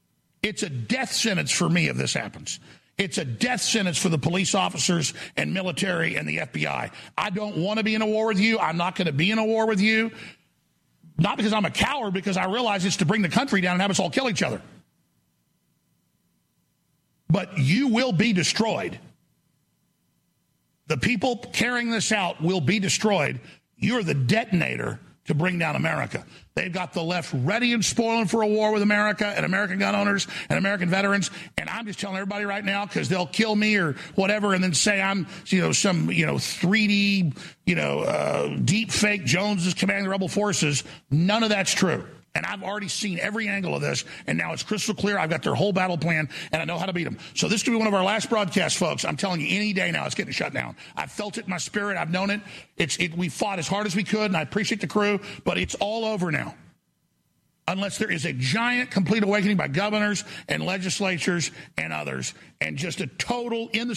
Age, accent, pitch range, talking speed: 50-69, American, 175-210 Hz, 220 wpm